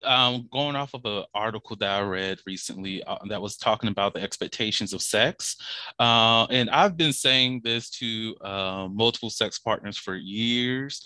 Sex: male